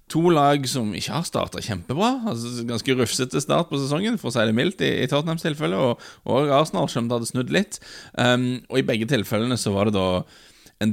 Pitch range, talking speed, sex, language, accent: 95-125 Hz, 220 wpm, male, English, Norwegian